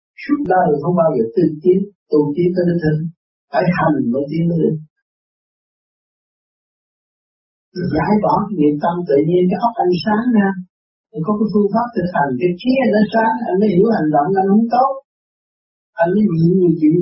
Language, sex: Vietnamese, male